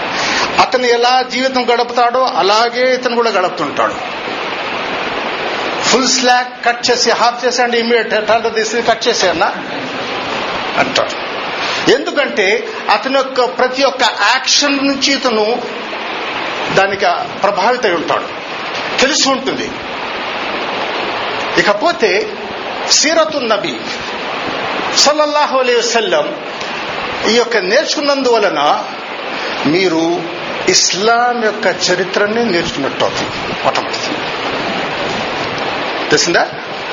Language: Telugu